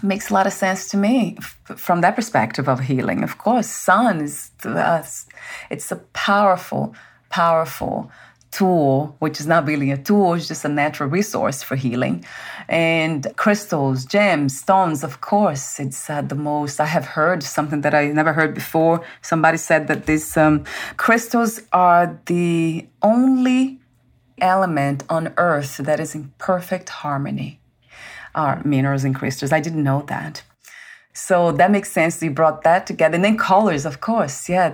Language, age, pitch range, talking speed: English, 30-49, 145-195 Hz, 160 wpm